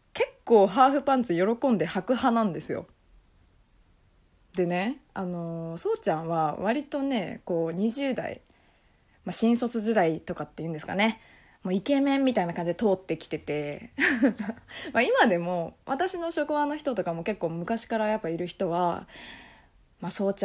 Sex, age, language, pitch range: female, 20-39, Japanese, 165-250 Hz